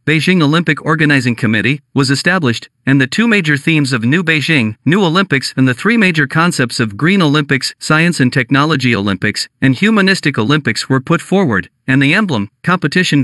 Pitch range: 130-170 Hz